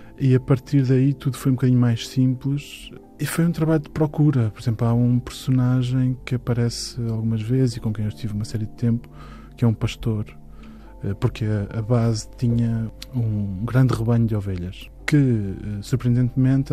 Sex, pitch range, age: male, 110-130 Hz, 20-39